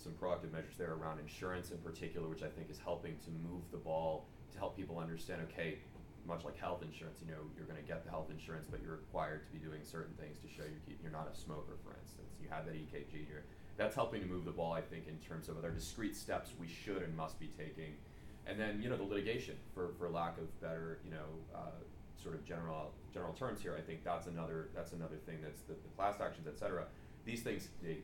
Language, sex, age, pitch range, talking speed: English, male, 30-49, 75-85 Hz, 240 wpm